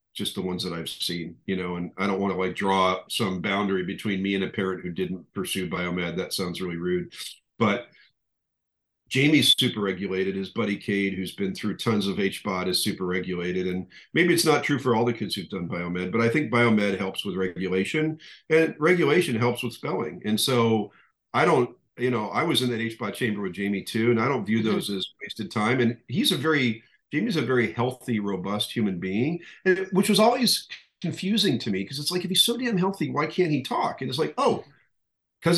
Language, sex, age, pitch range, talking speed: English, male, 50-69, 100-160 Hz, 215 wpm